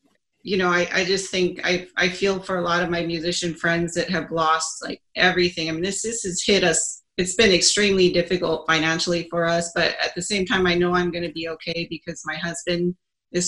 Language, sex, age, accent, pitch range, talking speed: English, female, 30-49, American, 165-185 Hz, 225 wpm